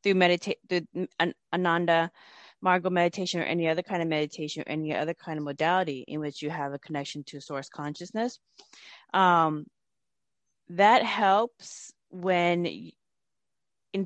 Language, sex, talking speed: English, female, 135 wpm